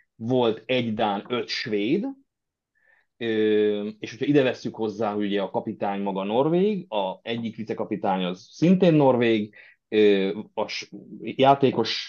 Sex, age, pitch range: male, 30-49, 100-130 Hz